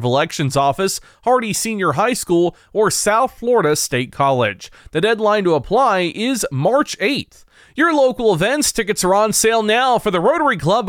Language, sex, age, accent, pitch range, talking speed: English, male, 30-49, American, 165-230 Hz, 165 wpm